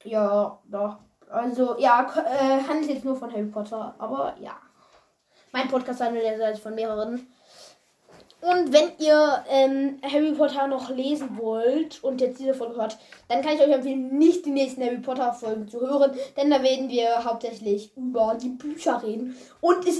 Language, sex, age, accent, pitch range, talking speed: German, female, 20-39, German, 240-305 Hz, 170 wpm